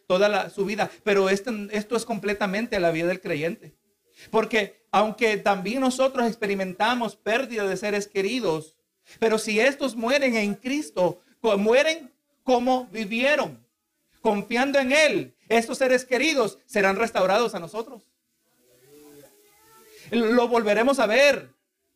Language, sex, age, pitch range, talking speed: Spanish, male, 50-69, 200-255 Hz, 125 wpm